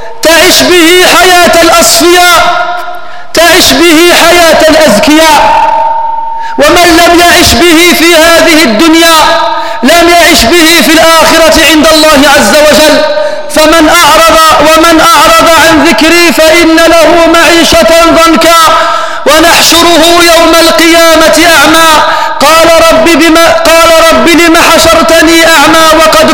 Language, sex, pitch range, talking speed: French, male, 315-335 Hz, 105 wpm